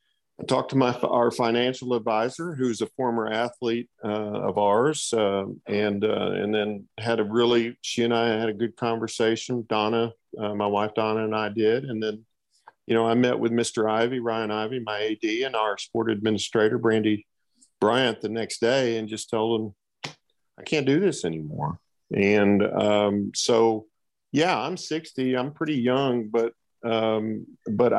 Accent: American